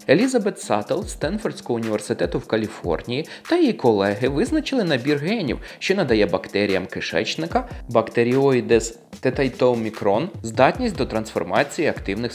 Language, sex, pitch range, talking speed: Ukrainian, male, 115-175 Hz, 110 wpm